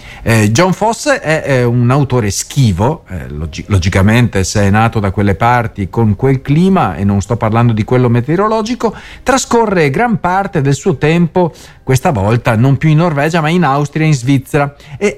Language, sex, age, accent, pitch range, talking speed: Italian, male, 40-59, native, 110-170 Hz, 180 wpm